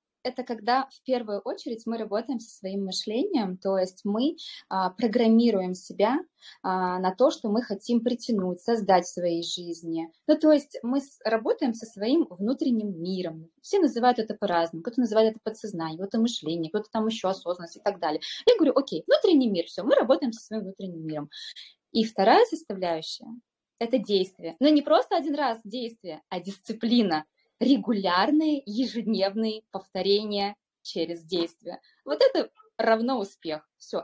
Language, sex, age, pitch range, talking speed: Russian, female, 20-39, 185-250 Hz, 155 wpm